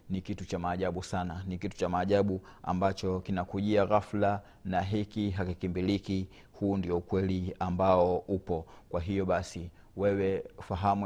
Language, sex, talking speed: Swahili, male, 135 wpm